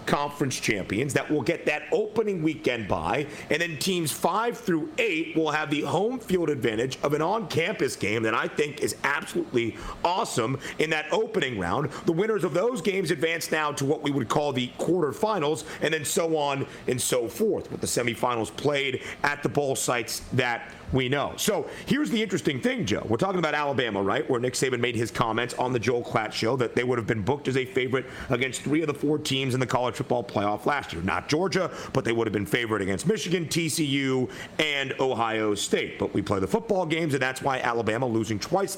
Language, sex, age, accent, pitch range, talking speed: English, male, 40-59, American, 130-180 Hz, 215 wpm